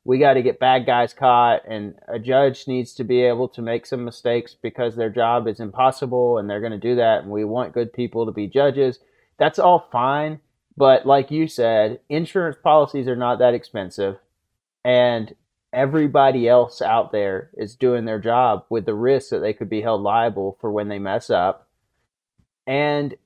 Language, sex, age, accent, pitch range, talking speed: English, male, 30-49, American, 105-130 Hz, 190 wpm